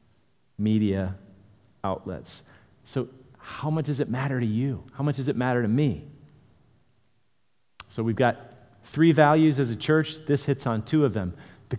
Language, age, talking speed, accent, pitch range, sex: English, 40-59, 165 wpm, American, 110-135 Hz, male